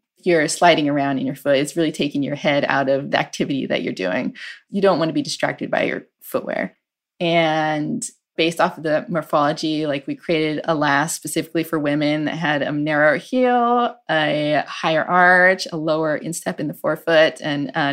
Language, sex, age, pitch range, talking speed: English, female, 20-39, 150-180 Hz, 190 wpm